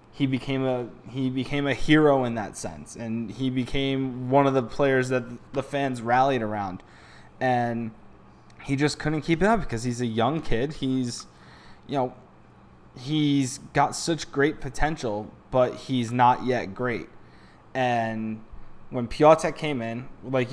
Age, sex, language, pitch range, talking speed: 20-39, male, English, 115-135 Hz, 155 wpm